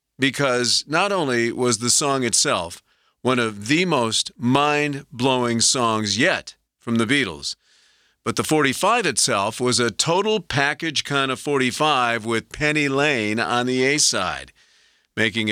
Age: 50-69